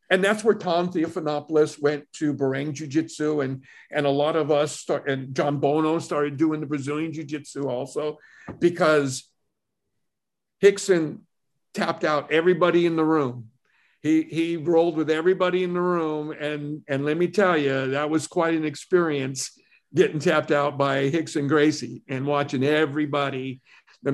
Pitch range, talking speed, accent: 140-165 Hz, 155 wpm, American